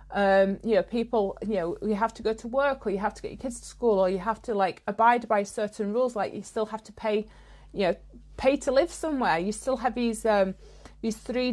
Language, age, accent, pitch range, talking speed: English, 30-49, British, 210-265 Hz, 250 wpm